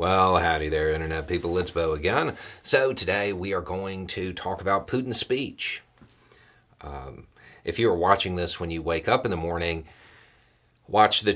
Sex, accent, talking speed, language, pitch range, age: male, American, 175 wpm, English, 80-100 Hz, 40-59